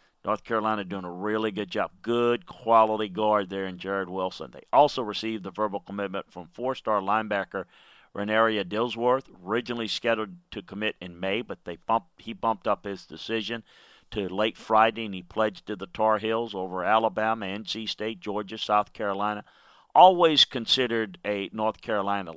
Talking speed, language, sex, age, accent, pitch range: 165 wpm, English, male, 40-59, American, 100-115 Hz